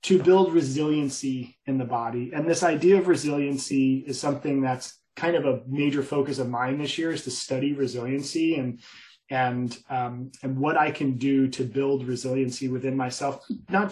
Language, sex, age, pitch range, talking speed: English, male, 20-39, 130-160 Hz, 175 wpm